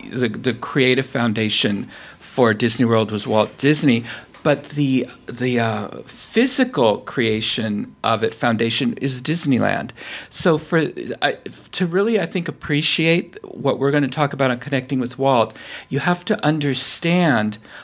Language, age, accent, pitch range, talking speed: English, 50-69, American, 120-155 Hz, 145 wpm